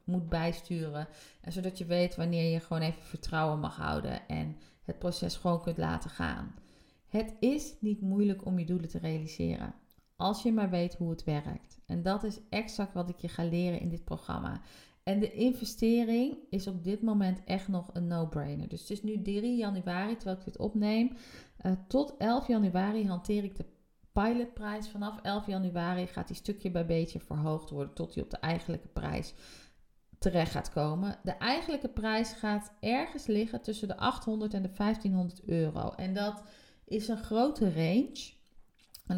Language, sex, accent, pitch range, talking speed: Dutch, female, Dutch, 175-215 Hz, 180 wpm